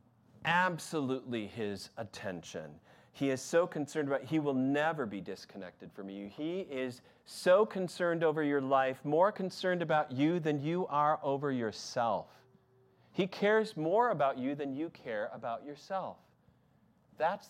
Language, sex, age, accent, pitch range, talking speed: English, male, 40-59, American, 120-155 Hz, 145 wpm